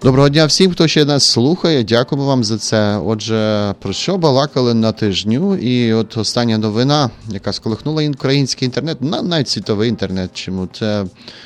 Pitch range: 105-135 Hz